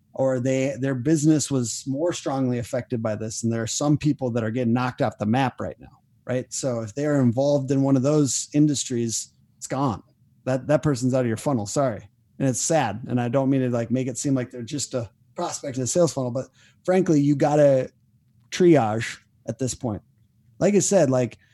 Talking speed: 215 wpm